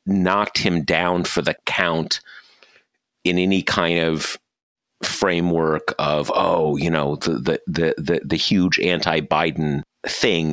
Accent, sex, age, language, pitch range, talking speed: American, male, 40-59, English, 80-95 Hz, 130 wpm